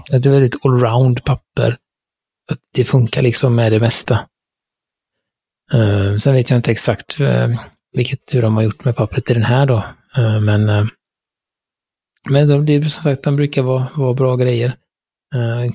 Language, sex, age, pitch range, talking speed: Swedish, male, 30-49, 115-140 Hz, 150 wpm